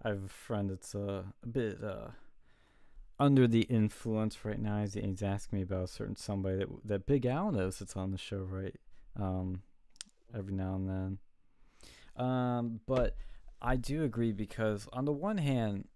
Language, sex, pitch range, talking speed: English, male, 95-120 Hz, 175 wpm